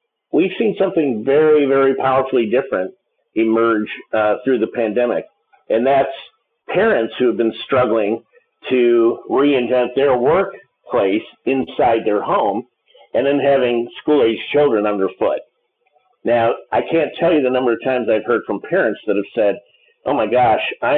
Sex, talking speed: male, 150 wpm